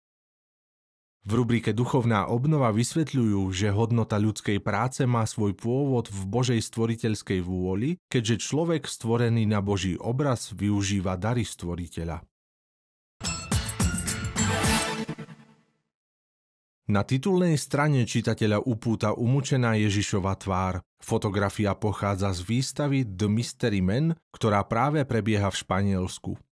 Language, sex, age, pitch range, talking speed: Slovak, male, 40-59, 100-125 Hz, 100 wpm